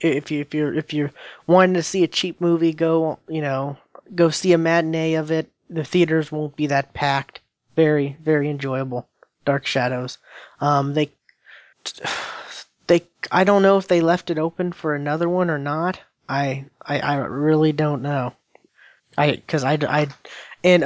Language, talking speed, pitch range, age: English, 165 wpm, 140-170 Hz, 20-39